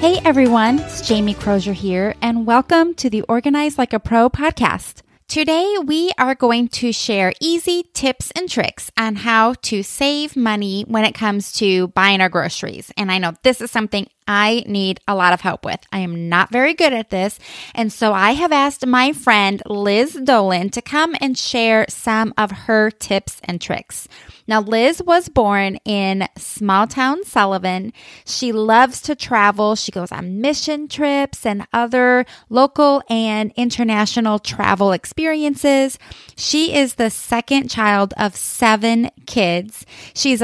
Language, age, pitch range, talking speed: English, 20-39, 205-260 Hz, 160 wpm